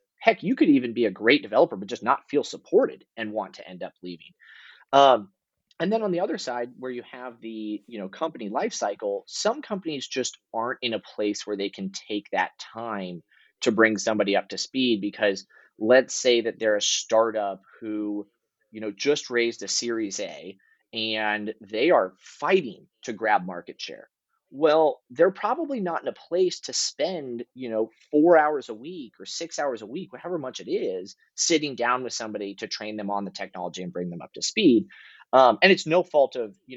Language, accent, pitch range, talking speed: English, American, 105-160 Hz, 200 wpm